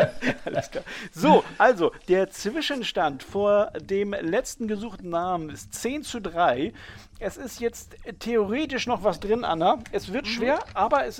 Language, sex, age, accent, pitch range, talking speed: German, male, 50-69, German, 145-220 Hz, 150 wpm